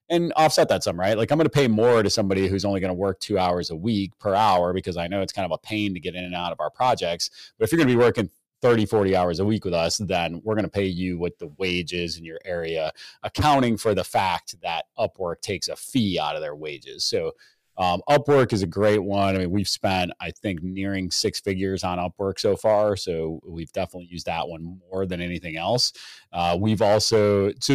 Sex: male